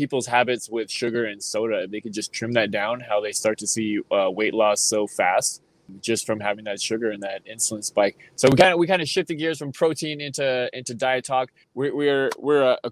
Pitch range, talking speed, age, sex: 110-135 Hz, 230 wpm, 20-39, male